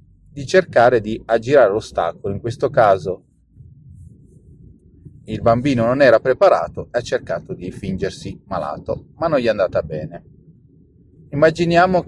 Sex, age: male, 30-49